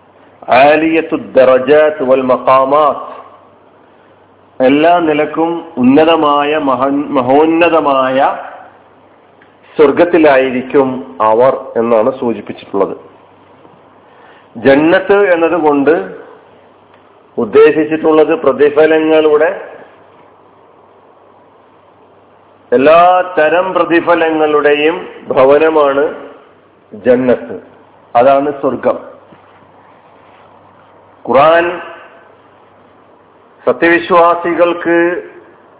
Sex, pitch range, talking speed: male, 145-175 Hz, 35 wpm